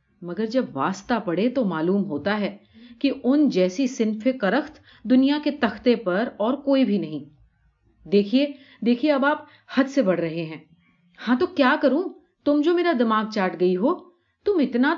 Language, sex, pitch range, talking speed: Urdu, female, 175-260 Hz, 170 wpm